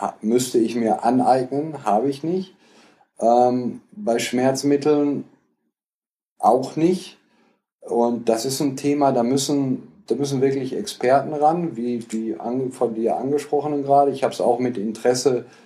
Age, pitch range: 40-59, 115-145 Hz